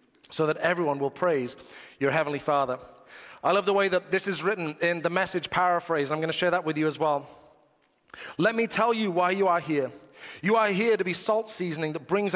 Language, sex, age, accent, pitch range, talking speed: English, male, 30-49, British, 150-195 Hz, 220 wpm